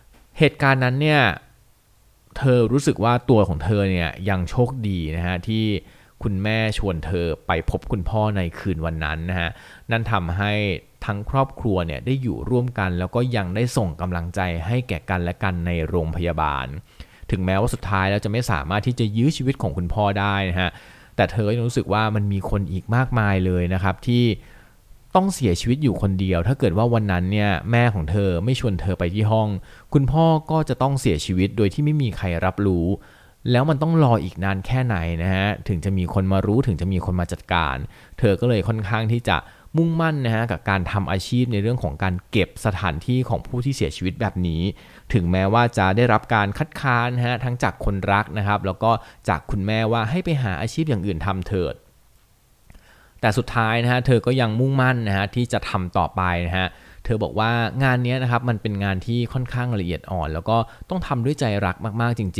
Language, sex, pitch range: Thai, male, 95-120 Hz